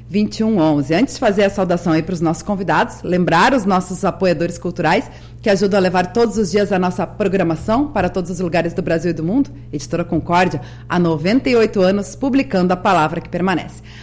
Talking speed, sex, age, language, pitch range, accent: 190 wpm, female, 40-59, Portuguese, 165-210 Hz, Brazilian